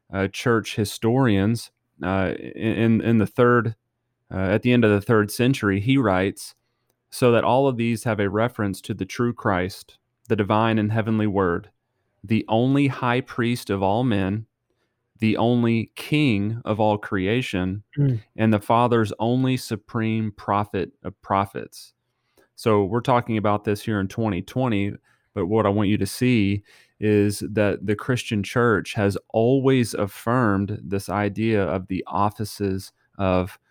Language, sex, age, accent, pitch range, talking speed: English, male, 30-49, American, 100-120 Hz, 150 wpm